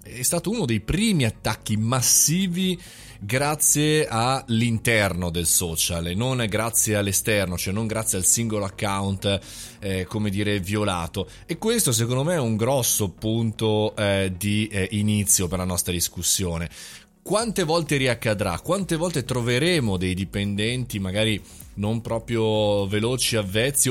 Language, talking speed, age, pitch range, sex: Italian, 135 wpm, 30-49, 100-125 Hz, male